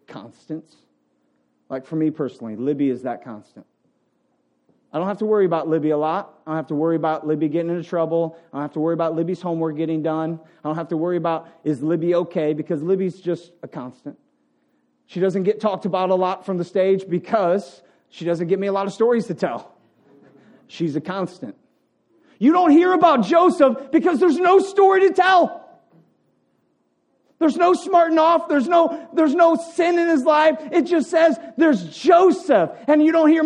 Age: 40-59